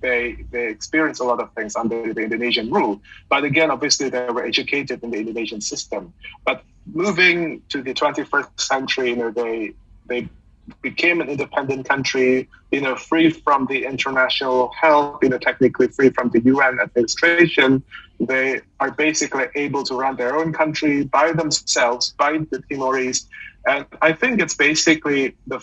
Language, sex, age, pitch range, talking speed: English, male, 30-49, 125-145 Hz, 165 wpm